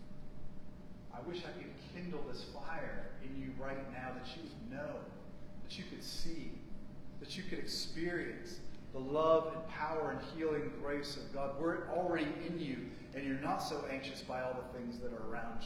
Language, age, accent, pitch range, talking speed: English, 40-59, American, 140-175 Hz, 180 wpm